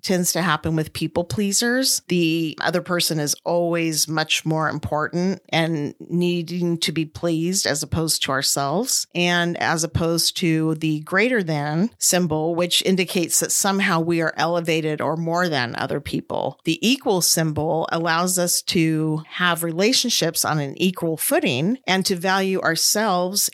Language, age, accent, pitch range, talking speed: English, 40-59, American, 160-195 Hz, 150 wpm